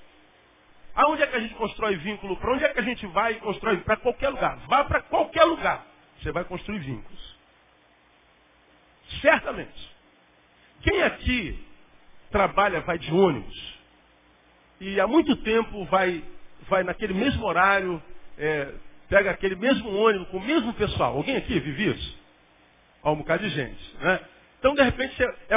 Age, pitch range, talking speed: 50-69, 180-255 Hz, 155 wpm